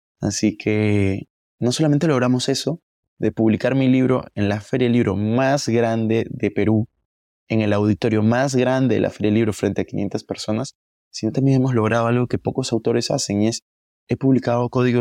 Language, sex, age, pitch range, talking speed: Spanish, male, 20-39, 105-125 Hz, 180 wpm